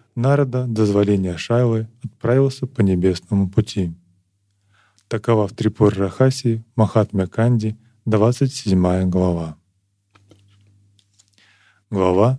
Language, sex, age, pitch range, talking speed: Russian, male, 20-39, 100-120 Hz, 75 wpm